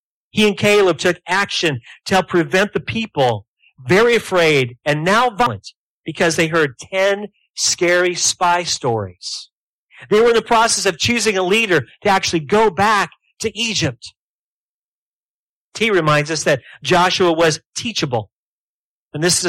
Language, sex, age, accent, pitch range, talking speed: English, male, 40-59, American, 135-185 Hz, 145 wpm